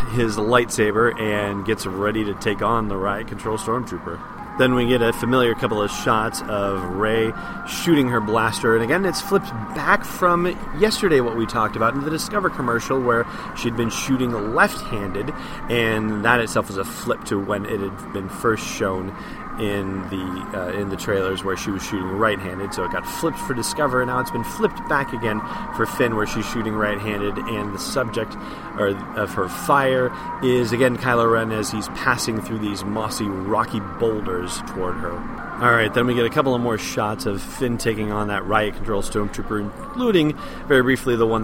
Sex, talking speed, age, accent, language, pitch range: male, 190 wpm, 30-49, American, English, 105-125 Hz